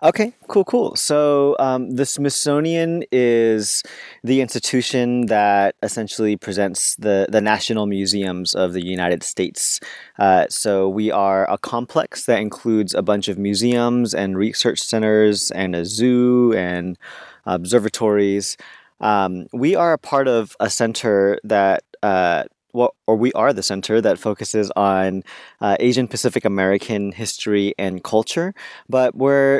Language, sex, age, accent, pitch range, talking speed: English, male, 20-39, American, 100-120 Hz, 135 wpm